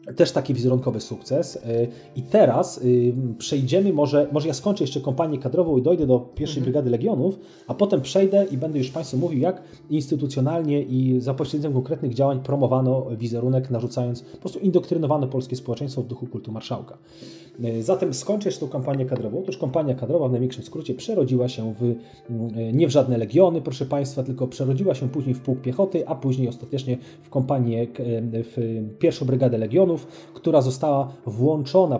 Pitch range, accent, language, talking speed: 120-150 Hz, native, Polish, 165 wpm